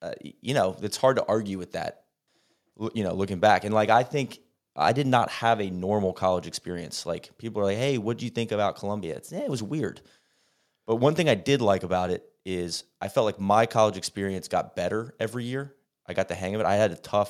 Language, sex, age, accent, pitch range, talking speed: English, male, 20-39, American, 90-110 Hz, 245 wpm